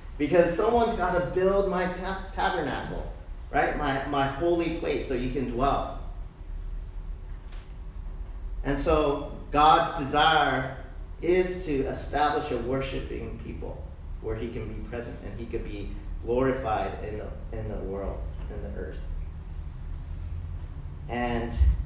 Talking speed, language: 125 wpm, English